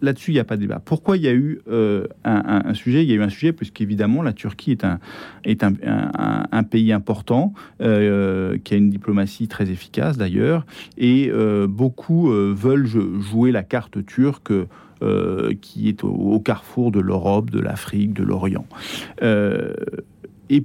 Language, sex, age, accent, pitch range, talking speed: French, male, 40-59, French, 105-140 Hz, 180 wpm